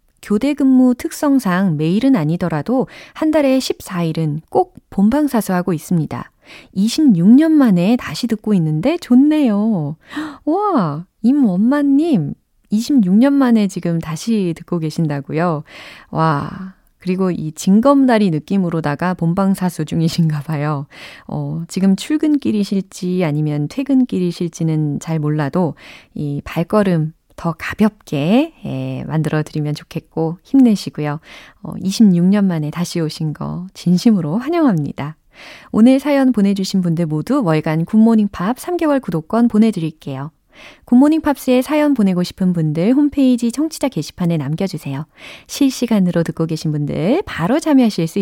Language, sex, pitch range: Korean, female, 160-255 Hz